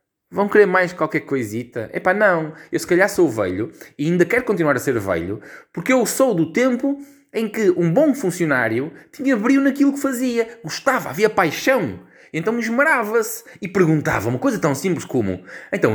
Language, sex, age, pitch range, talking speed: Portuguese, male, 20-39, 115-175 Hz, 175 wpm